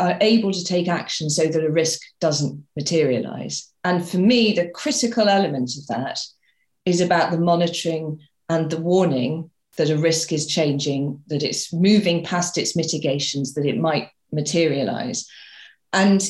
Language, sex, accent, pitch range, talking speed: English, female, British, 155-210 Hz, 155 wpm